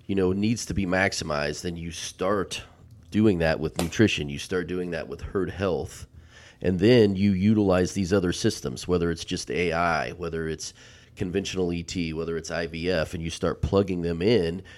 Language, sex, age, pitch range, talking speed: English, male, 30-49, 85-100 Hz, 180 wpm